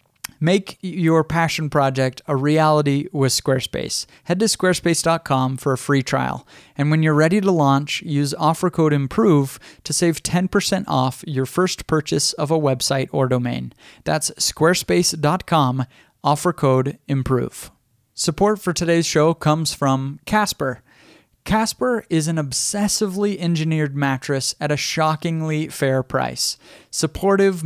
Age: 30-49